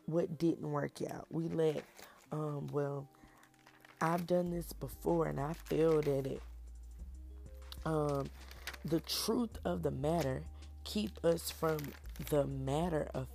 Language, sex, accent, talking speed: English, female, American, 130 wpm